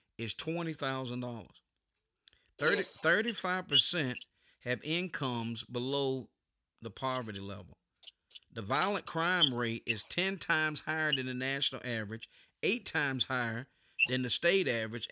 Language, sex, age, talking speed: English, male, 50-69, 125 wpm